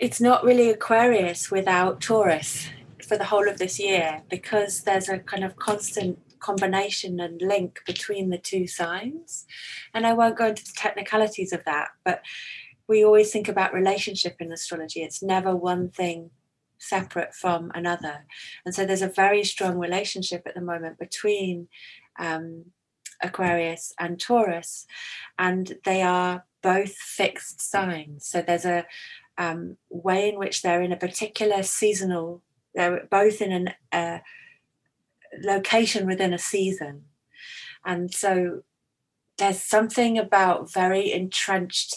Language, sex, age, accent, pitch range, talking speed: English, female, 30-49, British, 175-205 Hz, 140 wpm